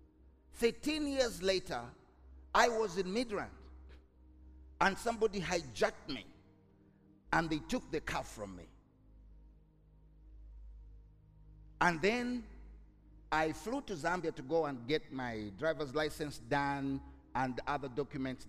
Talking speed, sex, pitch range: 115 wpm, male, 100-150 Hz